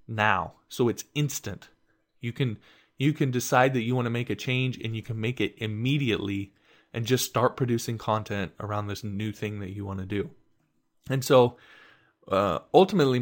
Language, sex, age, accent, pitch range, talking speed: English, male, 20-39, American, 105-125 Hz, 180 wpm